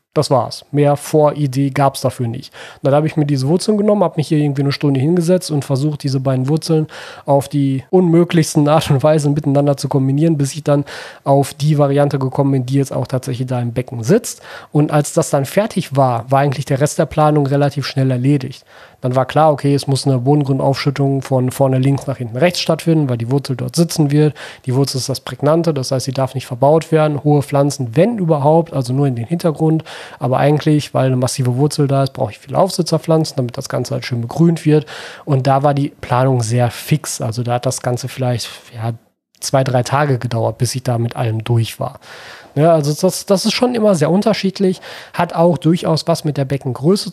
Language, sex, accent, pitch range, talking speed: German, male, German, 130-155 Hz, 215 wpm